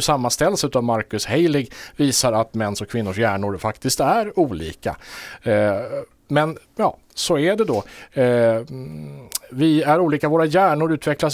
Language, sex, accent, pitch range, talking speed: Swedish, male, Norwegian, 105-145 Hz, 140 wpm